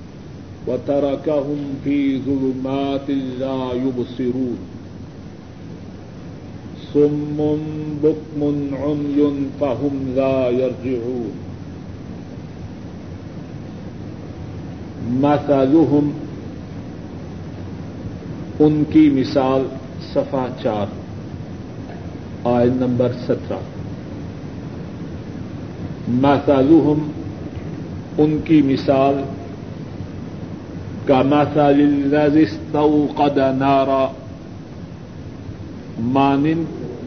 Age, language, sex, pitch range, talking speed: 50-69, Urdu, male, 125-150 Hz, 50 wpm